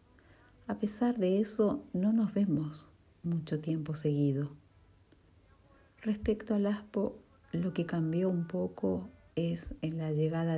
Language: Spanish